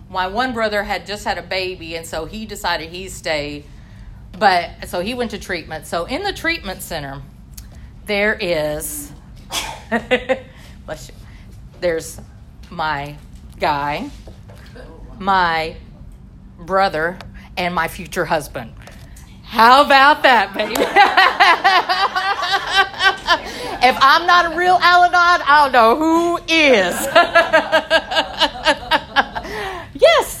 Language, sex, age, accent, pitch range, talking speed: English, female, 40-59, American, 170-255 Hz, 105 wpm